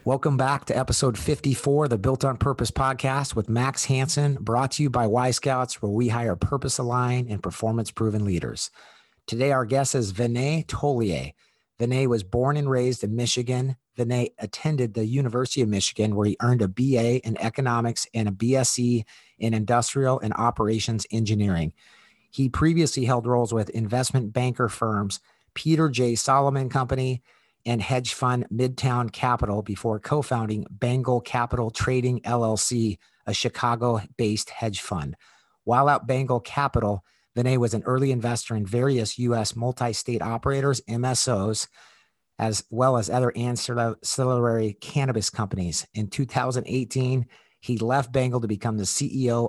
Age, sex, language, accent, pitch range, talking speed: 50-69, male, English, American, 110-130 Hz, 145 wpm